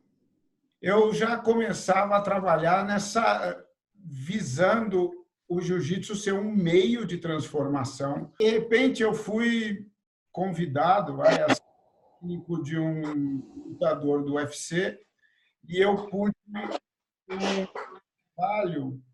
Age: 50-69